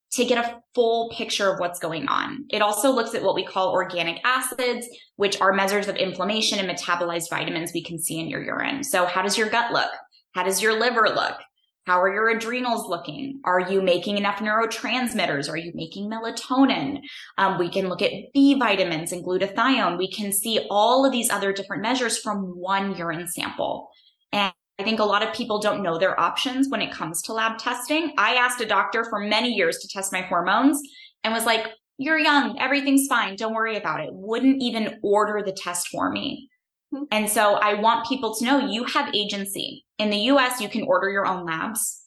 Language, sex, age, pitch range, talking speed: English, female, 20-39, 190-245 Hz, 205 wpm